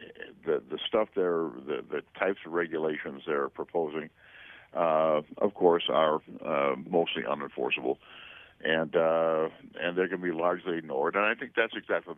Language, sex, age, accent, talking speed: English, male, 60-79, American, 165 wpm